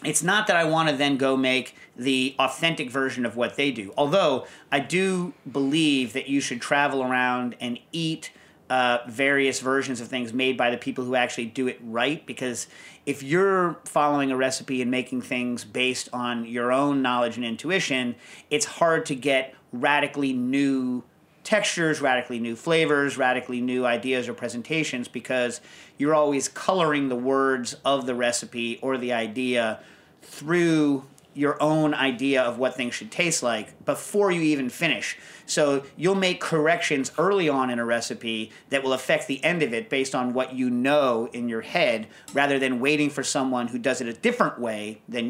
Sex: male